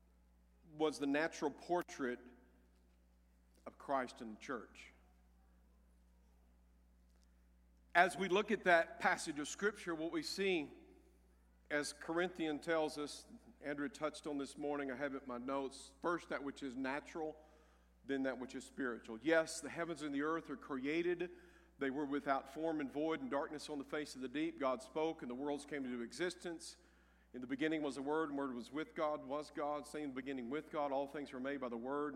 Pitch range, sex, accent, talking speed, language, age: 130-170 Hz, male, American, 190 wpm, English, 50-69